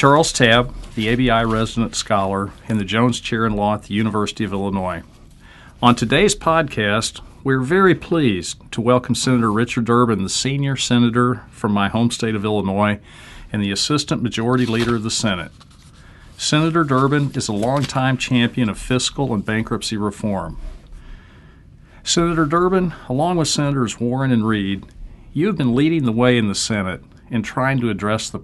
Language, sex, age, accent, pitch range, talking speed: English, male, 50-69, American, 105-130 Hz, 165 wpm